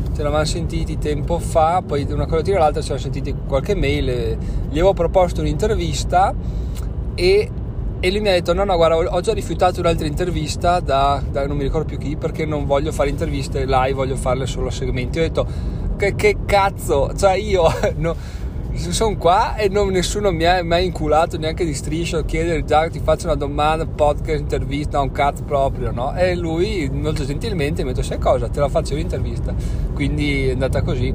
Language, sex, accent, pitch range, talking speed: Italian, male, native, 130-170 Hz, 200 wpm